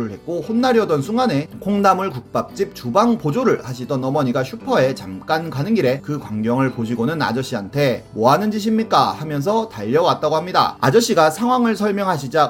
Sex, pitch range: male, 125-200 Hz